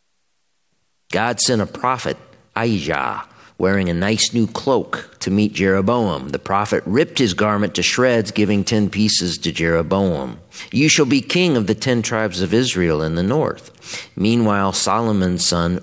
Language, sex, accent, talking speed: English, male, American, 155 wpm